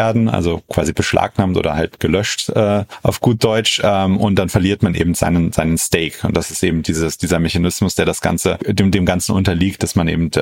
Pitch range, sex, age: 90-105 Hz, male, 30-49